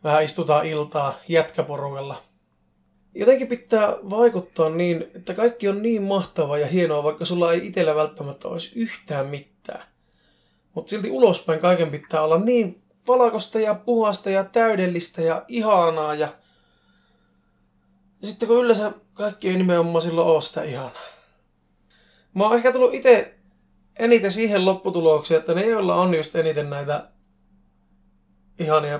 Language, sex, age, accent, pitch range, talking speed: Finnish, male, 20-39, native, 150-195 Hz, 130 wpm